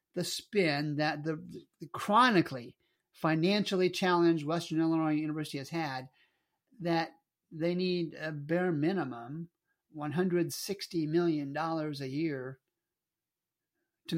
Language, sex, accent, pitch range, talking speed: English, male, American, 145-170 Hz, 95 wpm